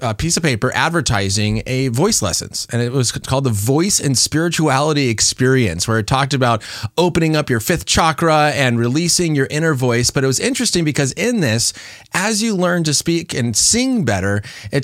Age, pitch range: 30-49, 130-175 Hz